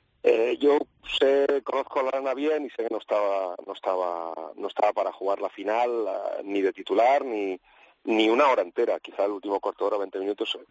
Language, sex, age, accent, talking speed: Spanish, male, 40-59, Spanish, 220 wpm